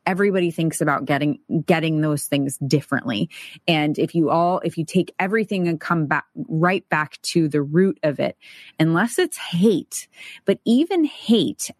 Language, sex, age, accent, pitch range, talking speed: English, female, 20-39, American, 150-185 Hz, 165 wpm